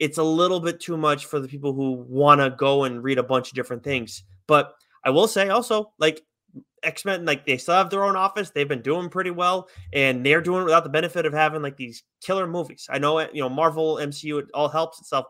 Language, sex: English, male